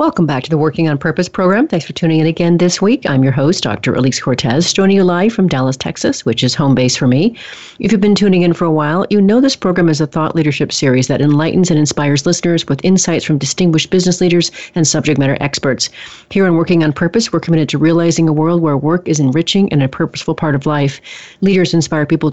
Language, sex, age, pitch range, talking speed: English, female, 40-59, 145-175 Hz, 240 wpm